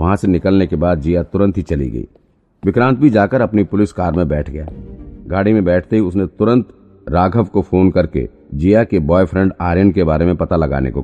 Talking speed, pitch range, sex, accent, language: 210 wpm, 85-105 Hz, male, native, Hindi